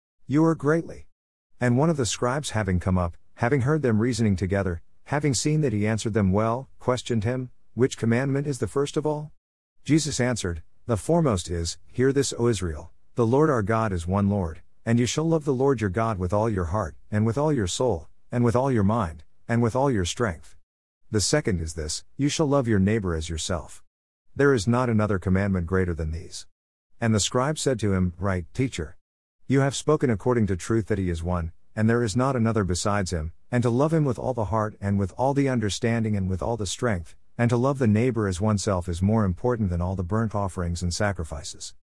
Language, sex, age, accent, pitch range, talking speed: English, male, 50-69, American, 90-125 Hz, 220 wpm